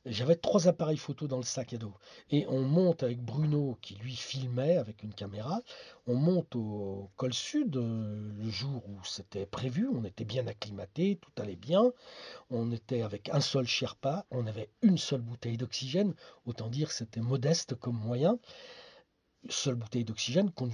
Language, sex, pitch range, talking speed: French, male, 115-165 Hz, 175 wpm